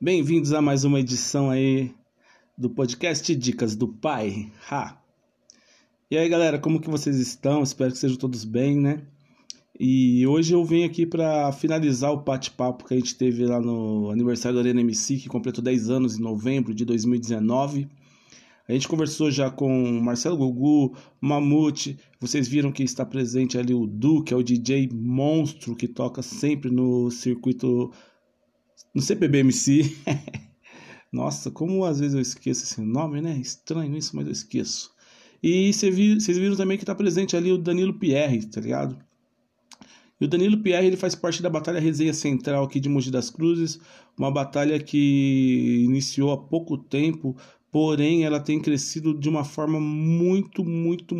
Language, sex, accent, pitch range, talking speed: Portuguese, male, Brazilian, 125-155 Hz, 165 wpm